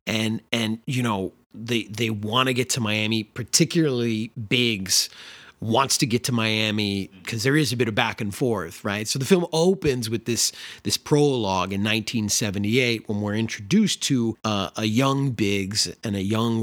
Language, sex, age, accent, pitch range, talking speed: English, male, 30-49, American, 105-130 Hz, 175 wpm